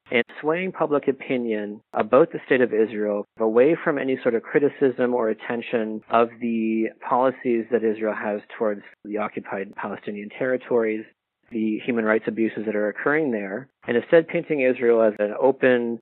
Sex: male